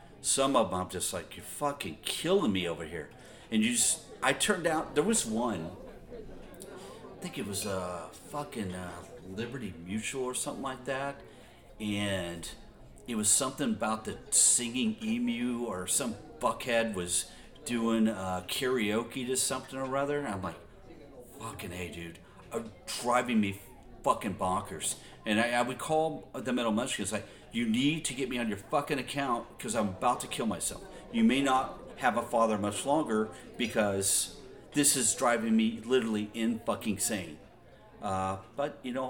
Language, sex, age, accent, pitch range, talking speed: English, male, 40-59, American, 105-140 Hz, 165 wpm